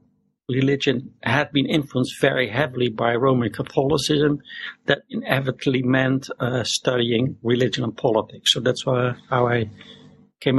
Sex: male